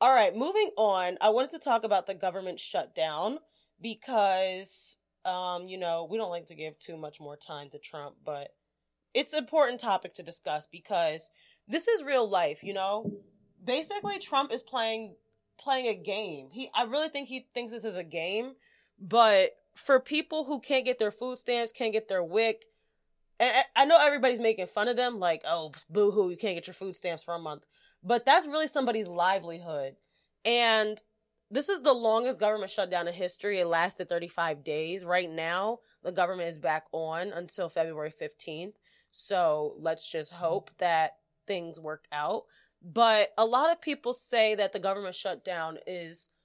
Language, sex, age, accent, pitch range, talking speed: English, female, 20-39, American, 170-230 Hz, 180 wpm